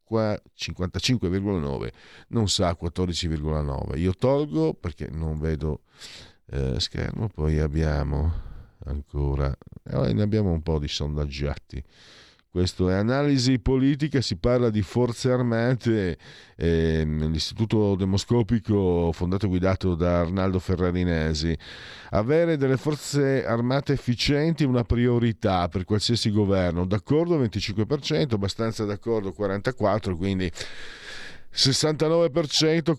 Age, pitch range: 50-69, 95-135 Hz